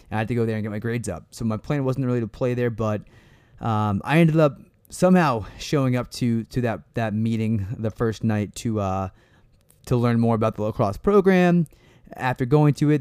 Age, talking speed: 20-39, 215 wpm